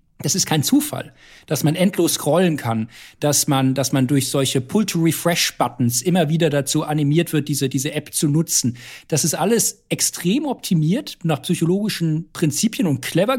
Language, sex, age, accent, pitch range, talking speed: German, male, 50-69, German, 140-185 Hz, 155 wpm